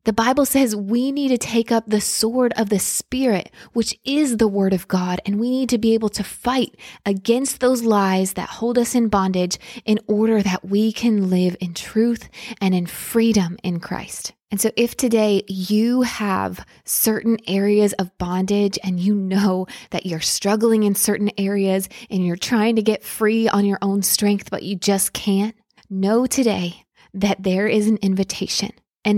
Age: 20-39